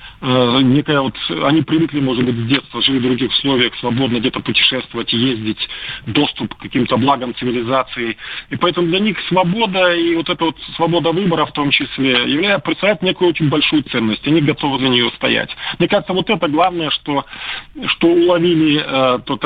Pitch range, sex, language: 125-160 Hz, male, Russian